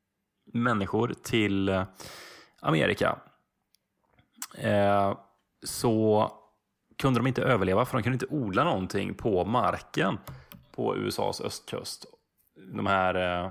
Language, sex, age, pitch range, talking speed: English, male, 20-39, 95-125 Hz, 95 wpm